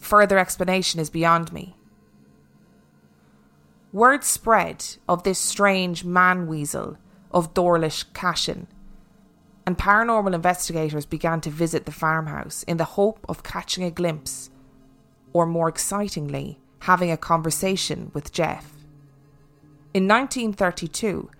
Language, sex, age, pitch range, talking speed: English, female, 20-39, 150-195 Hz, 110 wpm